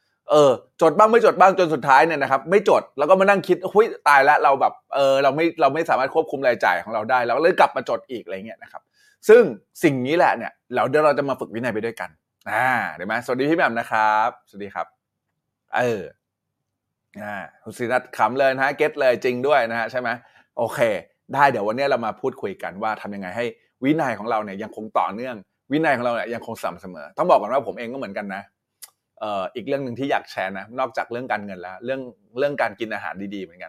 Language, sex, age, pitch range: Thai, male, 20-39, 115-160 Hz